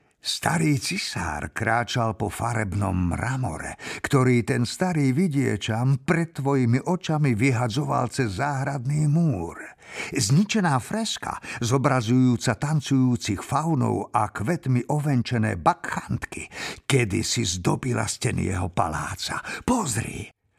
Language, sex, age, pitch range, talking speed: Slovak, male, 50-69, 105-140 Hz, 95 wpm